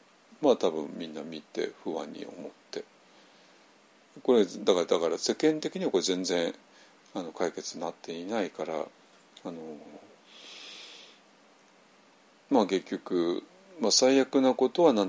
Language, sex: Japanese, male